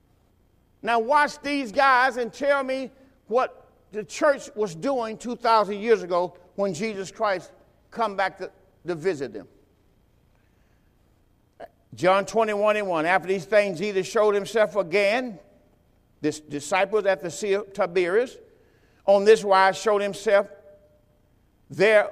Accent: American